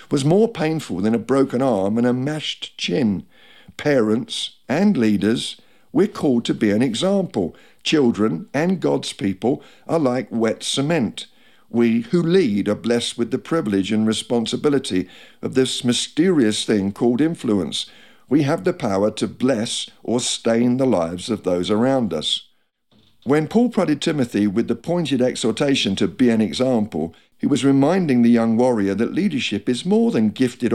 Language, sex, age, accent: English, male, 50-69, British